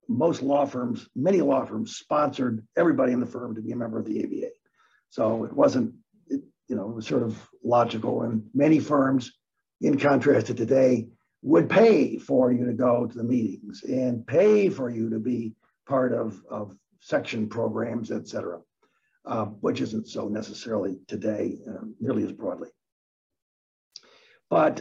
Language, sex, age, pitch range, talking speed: English, male, 50-69, 115-185 Hz, 165 wpm